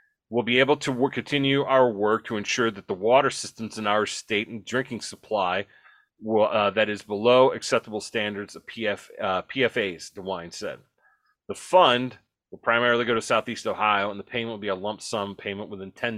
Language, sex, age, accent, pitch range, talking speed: English, male, 30-49, American, 110-135 Hz, 180 wpm